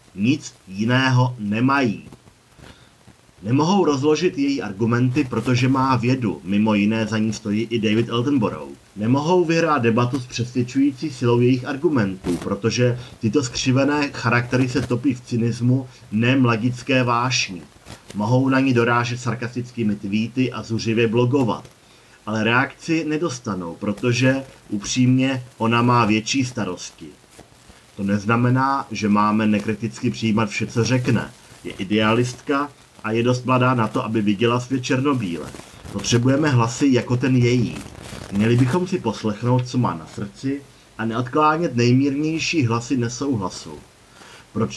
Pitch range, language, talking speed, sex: 110-135 Hz, Czech, 125 wpm, male